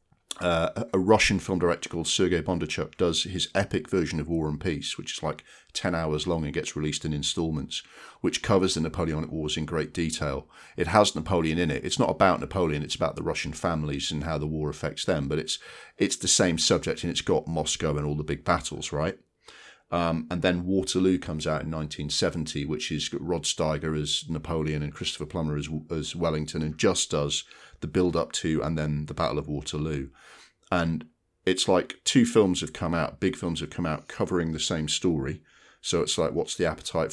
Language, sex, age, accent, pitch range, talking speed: English, male, 40-59, British, 75-90 Hz, 205 wpm